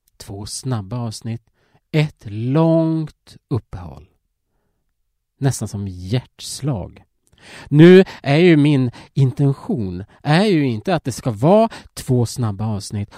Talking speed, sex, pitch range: 110 wpm, male, 100-145 Hz